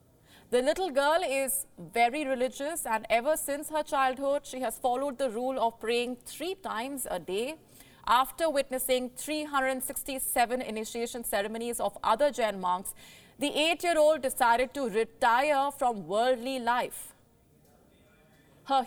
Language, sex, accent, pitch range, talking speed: English, female, Indian, 225-280 Hz, 125 wpm